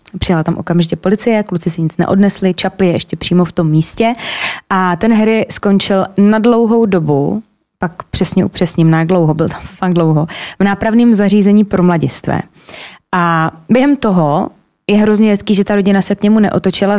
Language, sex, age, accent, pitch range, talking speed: Czech, female, 20-39, native, 180-220 Hz, 175 wpm